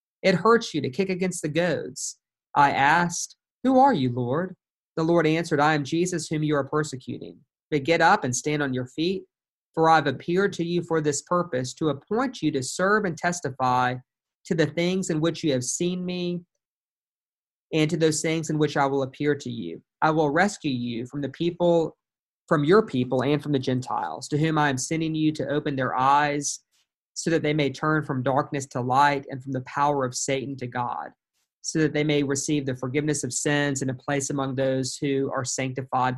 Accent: American